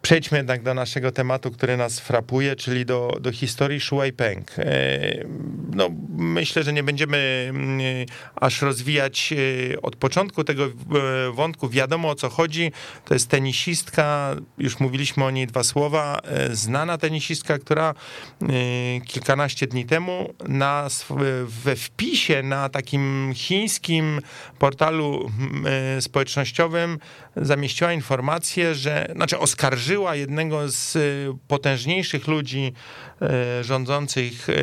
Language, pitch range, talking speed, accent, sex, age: Polish, 130-155 Hz, 105 wpm, native, male, 40-59